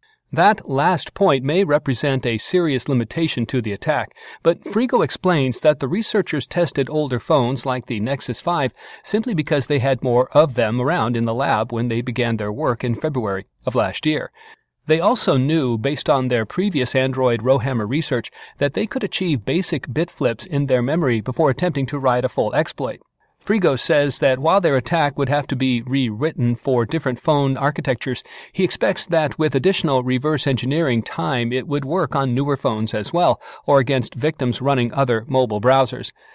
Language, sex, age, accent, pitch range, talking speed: English, male, 40-59, American, 125-155 Hz, 180 wpm